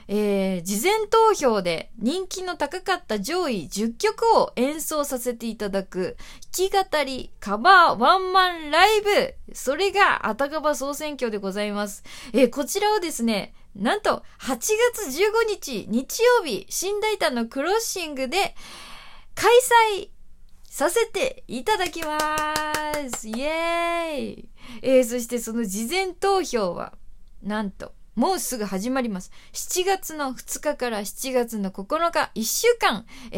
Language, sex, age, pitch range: Japanese, female, 20-39, 210-345 Hz